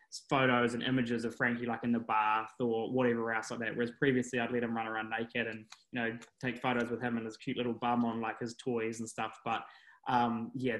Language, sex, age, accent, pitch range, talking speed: English, male, 10-29, Australian, 115-135 Hz, 240 wpm